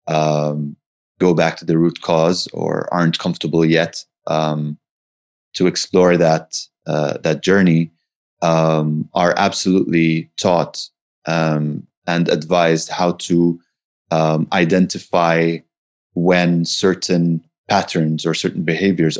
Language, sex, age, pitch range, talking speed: English, male, 30-49, 80-95 Hz, 110 wpm